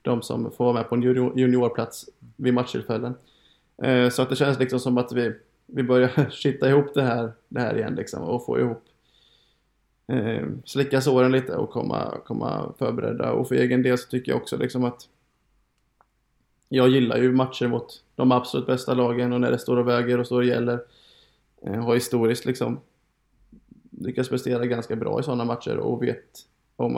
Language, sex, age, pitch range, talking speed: Swedish, male, 20-39, 120-130 Hz, 180 wpm